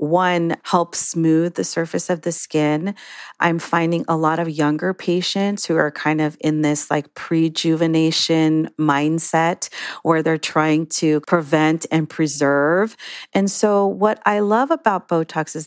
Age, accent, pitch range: 40-59, American, 155-190 Hz